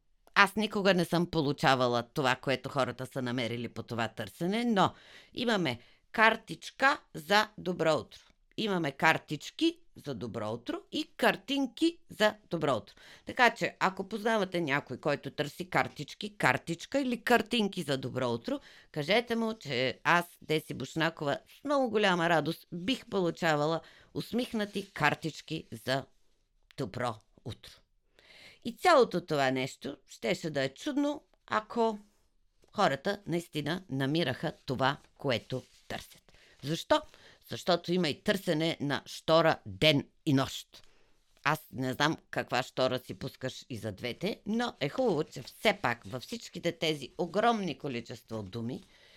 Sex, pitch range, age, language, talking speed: female, 130-205 Hz, 50-69, Bulgarian, 130 wpm